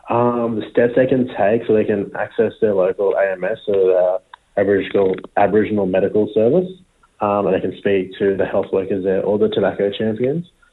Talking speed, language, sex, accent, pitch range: 190 wpm, English, male, Australian, 95-105 Hz